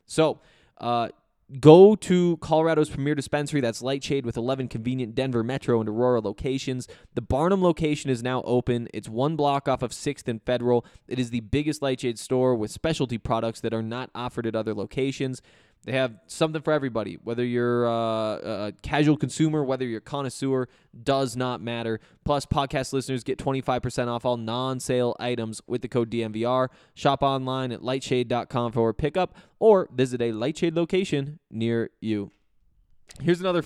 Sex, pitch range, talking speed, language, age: male, 120-145 Hz, 170 wpm, English, 20-39